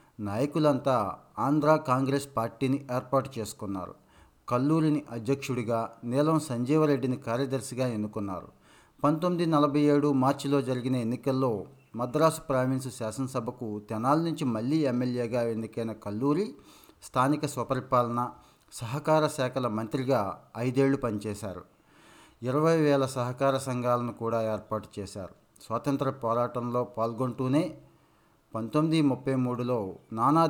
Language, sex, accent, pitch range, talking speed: Telugu, male, native, 115-140 Hz, 95 wpm